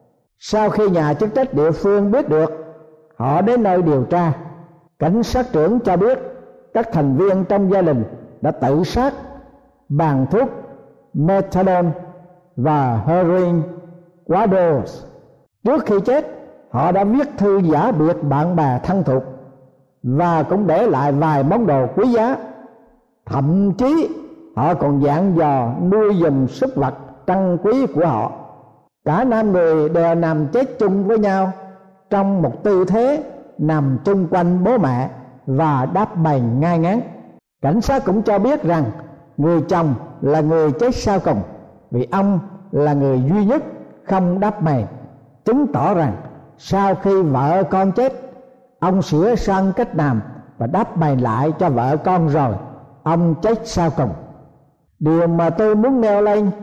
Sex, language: male, Vietnamese